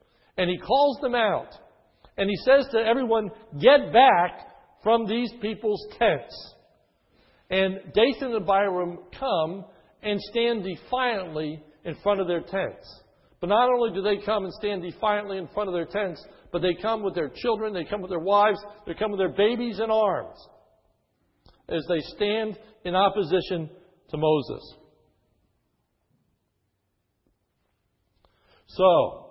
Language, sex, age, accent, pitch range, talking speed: English, male, 60-79, American, 180-220 Hz, 140 wpm